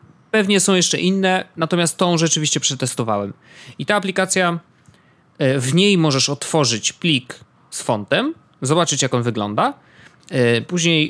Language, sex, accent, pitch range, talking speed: Polish, male, native, 130-180 Hz, 125 wpm